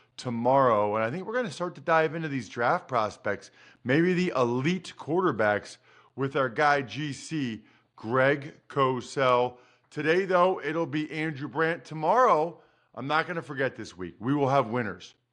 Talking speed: 165 wpm